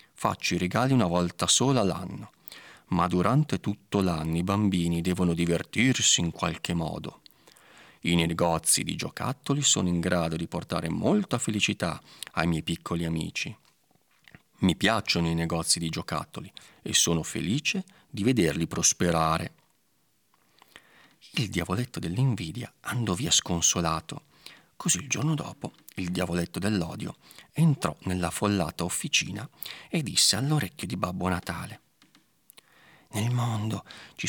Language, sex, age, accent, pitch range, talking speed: Italian, male, 40-59, native, 85-130 Hz, 125 wpm